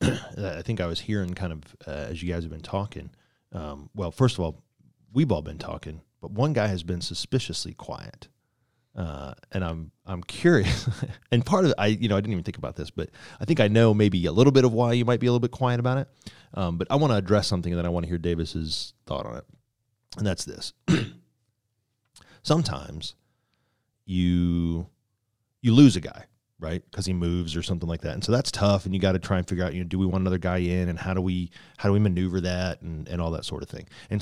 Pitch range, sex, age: 90-115 Hz, male, 30-49